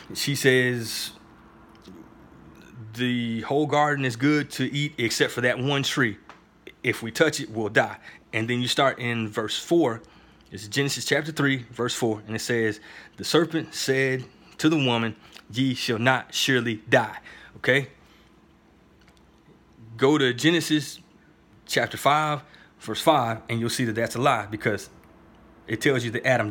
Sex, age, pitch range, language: male, 20-39, 115-145 Hz, English